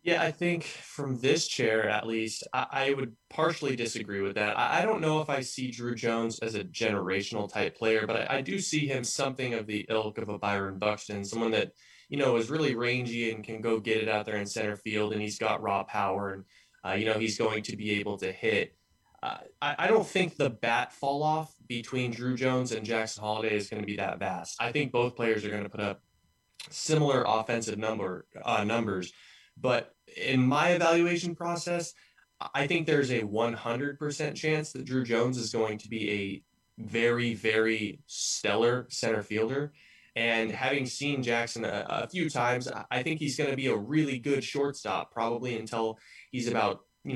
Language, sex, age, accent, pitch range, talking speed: English, male, 20-39, American, 105-135 Hz, 200 wpm